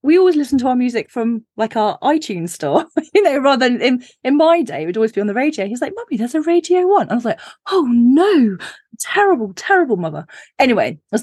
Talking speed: 235 wpm